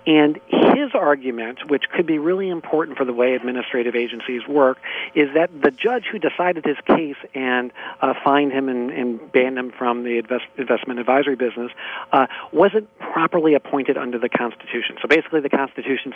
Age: 40-59